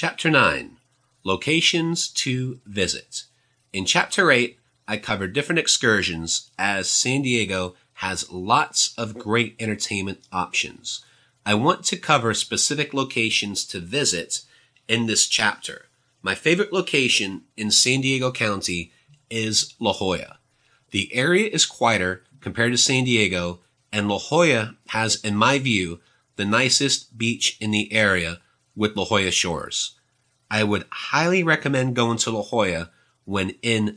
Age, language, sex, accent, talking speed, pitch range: 30-49, English, male, American, 135 wpm, 100-130 Hz